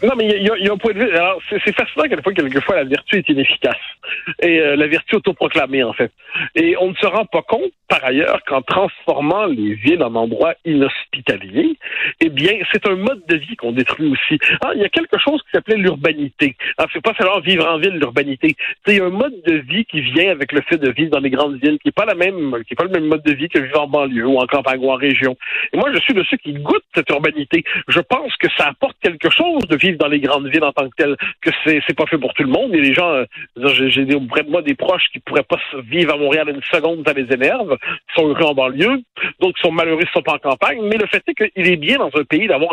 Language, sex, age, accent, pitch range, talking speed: French, male, 60-79, French, 145-205 Hz, 270 wpm